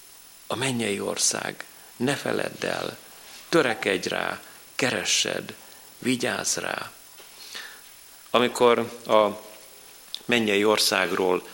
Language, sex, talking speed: Hungarian, male, 80 wpm